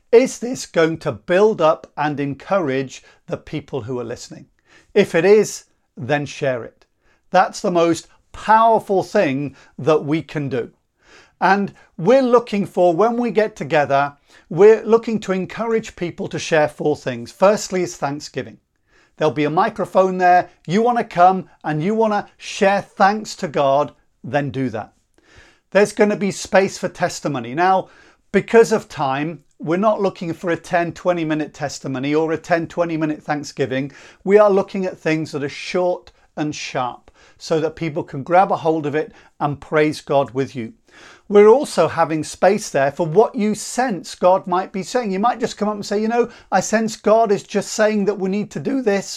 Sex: male